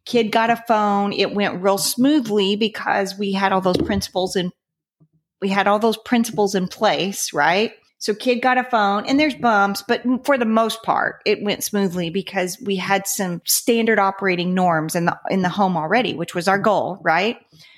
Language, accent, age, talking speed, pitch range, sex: English, American, 40-59, 190 wpm, 195-245 Hz, female